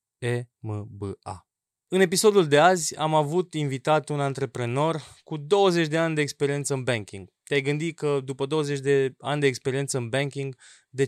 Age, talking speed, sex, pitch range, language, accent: 20-39, 160 wpm, male, 120-155 Hz, Romanian, native